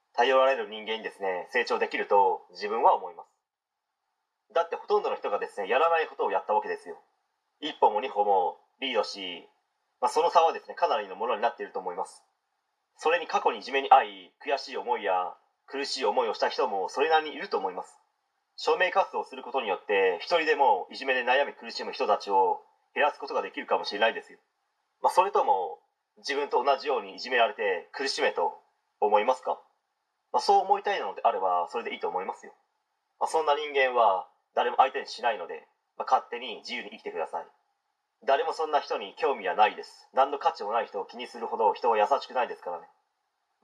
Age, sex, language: 30-49, male, Japanese